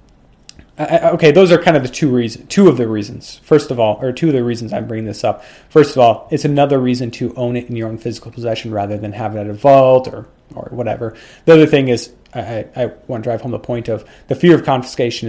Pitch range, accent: 115-145 Hz, American